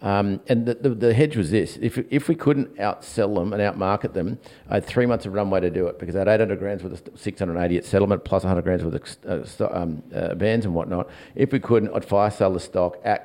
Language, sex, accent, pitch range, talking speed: English, male, Australian, 90-110 Hz, 245 wpm